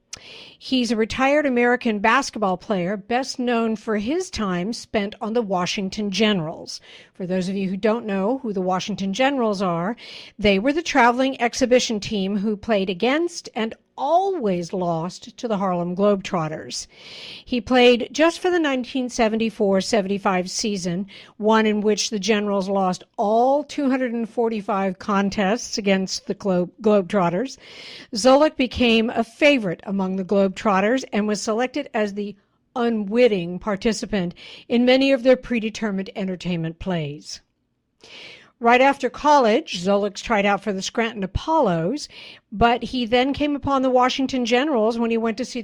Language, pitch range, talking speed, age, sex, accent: English, 195-245 Hz, 140 wpm, 60-79, female, American